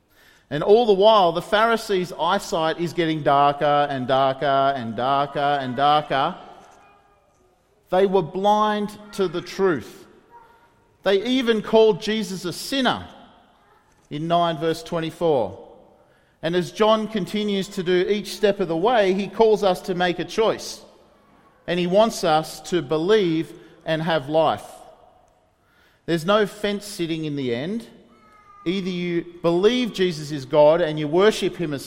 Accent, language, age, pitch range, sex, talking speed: Australian, English, 40-59, 155-205 Hz, male, 145 wpm